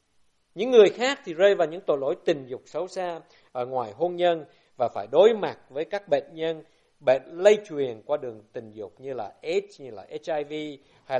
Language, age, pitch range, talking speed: Vietnamese, 60-79, 150-225 Hz, 210 wpm